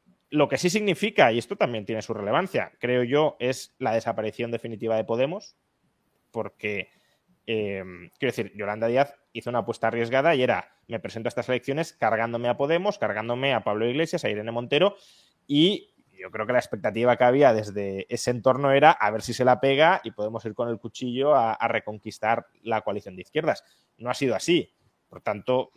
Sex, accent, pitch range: male, Spanish, 105-130 Hz